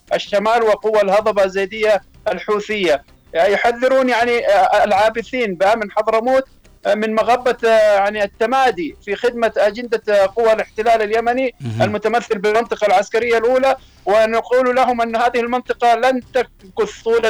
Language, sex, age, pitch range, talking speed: Arabic, male, 50-69, 215-245 Hz, 115 wpm